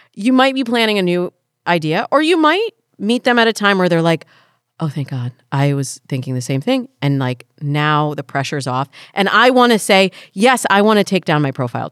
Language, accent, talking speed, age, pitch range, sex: English, American, 230 wpm, 30-49, 140-205 Hz, female